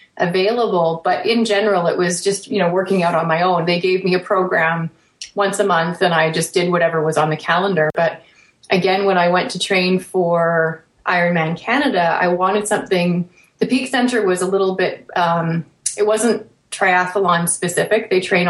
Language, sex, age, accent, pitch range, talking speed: English, female, 30-49, American, 170-200 Hz, 190 wpm